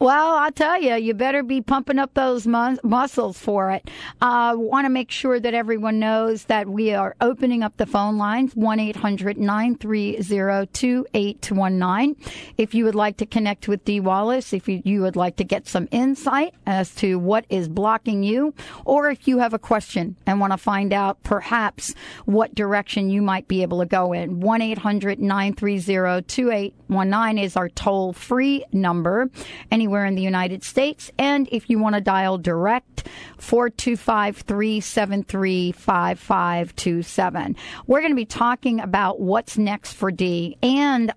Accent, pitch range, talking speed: American, 195-240 Hz, 155 wpm